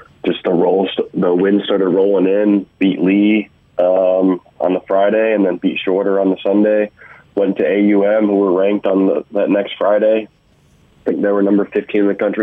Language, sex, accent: English, male, American